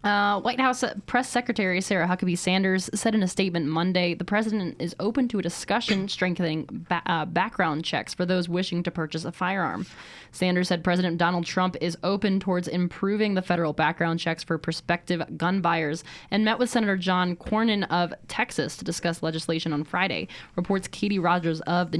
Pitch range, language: 170-195 Hz, English